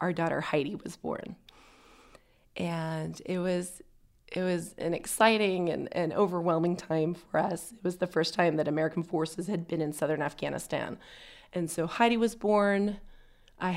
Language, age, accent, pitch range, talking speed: English, 30-49, American, 165-190 Hz, 160 wpm